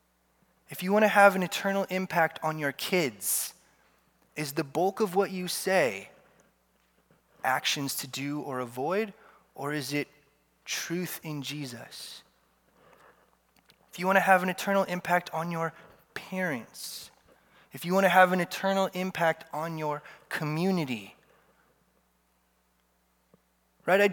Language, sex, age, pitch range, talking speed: English, male, 20-39, 155-210 Hz, 130 wpm